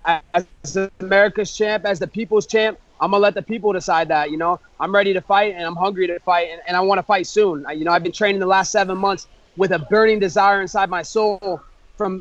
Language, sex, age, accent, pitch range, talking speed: English, male, 30-49, American, 190-220 Hz, 245 wpm